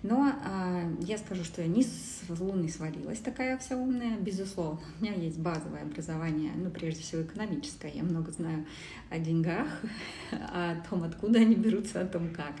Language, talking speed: Russian, 170 wpm